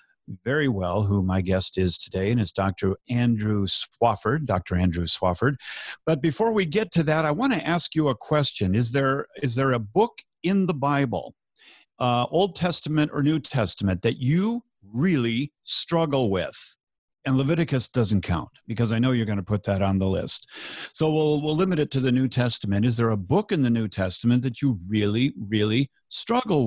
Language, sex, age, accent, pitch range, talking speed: English, male, 50-69, American, 105-140 Hz, 190 wpm